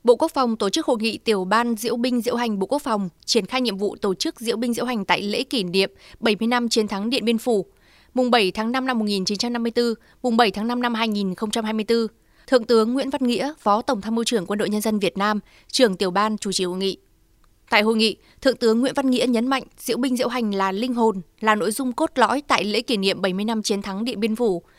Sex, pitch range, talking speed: female, 210-245 Hz, 255 wpm